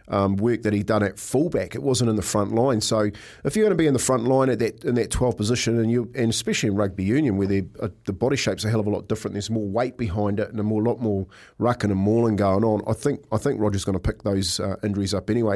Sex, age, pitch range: male, 40-59, 105-125 Hz